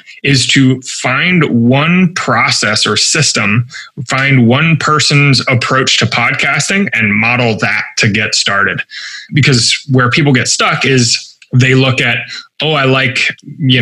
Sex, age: male, 20-39